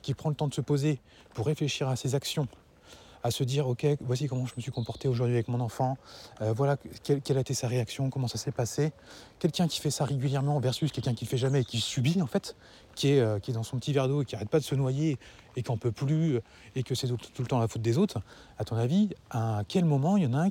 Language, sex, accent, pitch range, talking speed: French, male, French, 115-145 Hz, 295 wpm